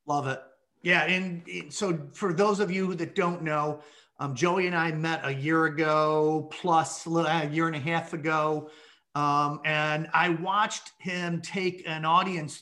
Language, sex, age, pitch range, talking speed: English, male, 30-49, 155-185 Hz, 165 wpm